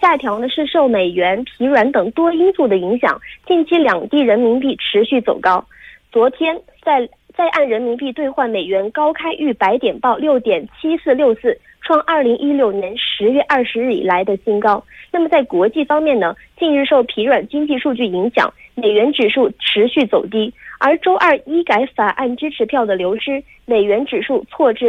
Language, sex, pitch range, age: Korean, female, 225-310 Hz, 20-39